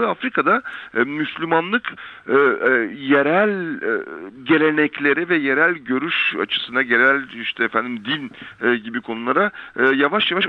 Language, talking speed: Turkish, 90 wpm